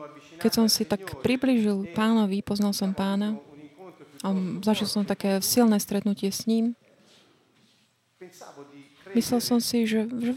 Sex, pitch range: female, 185-225 Hz